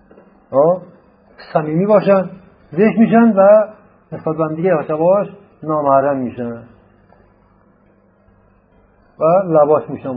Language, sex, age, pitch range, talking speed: Persian, male, 50-69, 115-175 Hz, 90 wpm